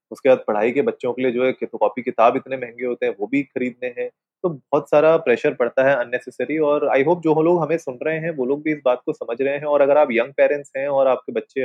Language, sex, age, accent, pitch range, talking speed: Hindi, male, 30-49, native, 120-150 Hz, 285 wpm